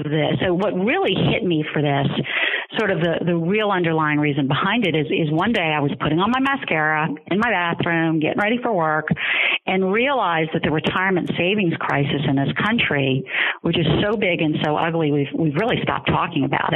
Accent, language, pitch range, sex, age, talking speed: American, English, 150-190 Hz, female, 40-59, 205 wpm